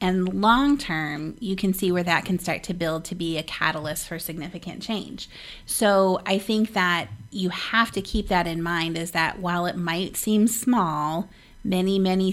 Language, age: English, 30-49